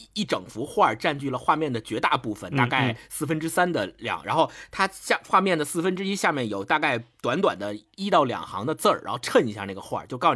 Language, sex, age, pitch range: Chinese, male, 50-69, 115-190 Hz